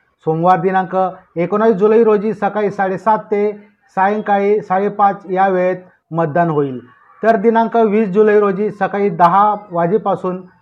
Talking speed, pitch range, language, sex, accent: 125 wpm, 180-205 Hz, Marathi, male, native